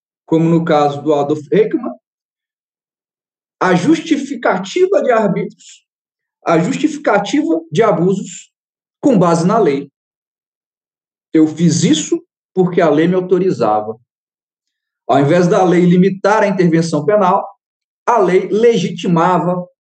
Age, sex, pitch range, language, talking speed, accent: 40-59, male, 165-225 Hz, Portuguese, 110 wpm, Brazilian